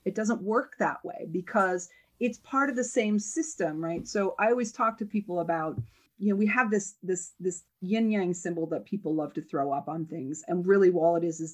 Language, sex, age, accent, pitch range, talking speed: English, female, 40-59, American, 165-215 Hz, 230 wpm